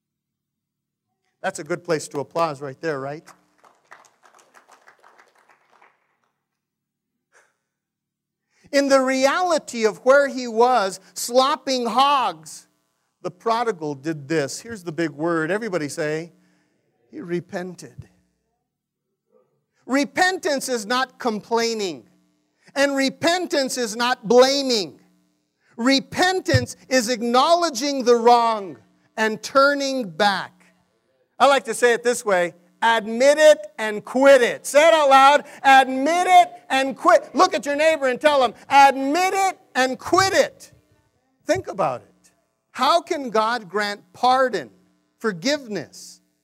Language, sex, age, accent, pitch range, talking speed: English, male, 50-69, American, 175-275 Hz, 115 wpm